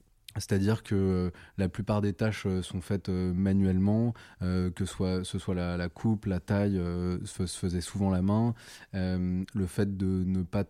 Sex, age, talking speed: male, 20-39, 145 wpm